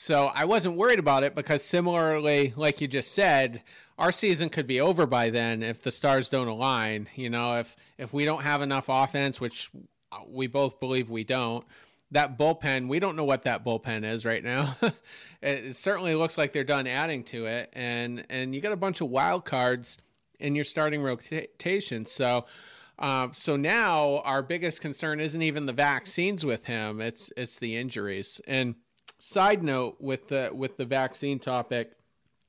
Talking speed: 185 wpm